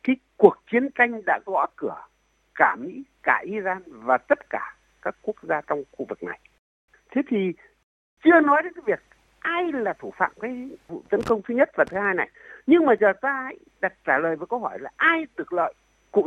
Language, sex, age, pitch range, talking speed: Vietnamese, male, 60-79, 220-325 Hz, 205 wpm